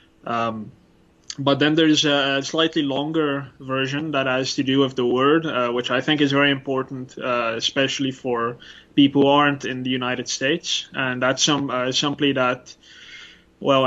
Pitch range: 120-140 Hz